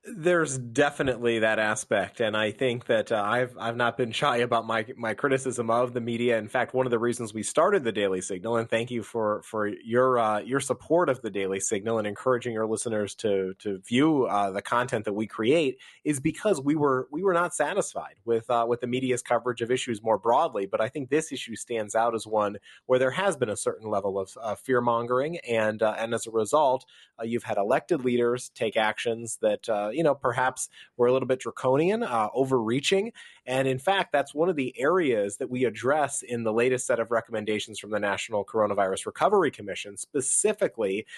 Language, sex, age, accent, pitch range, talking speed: English, male, 30-49, American, 110-135 Hz, 210 wpm